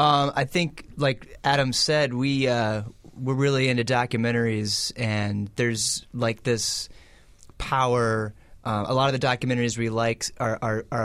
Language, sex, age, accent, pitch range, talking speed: English, male, 30-49, American, 110-125 Hz, 150 wpm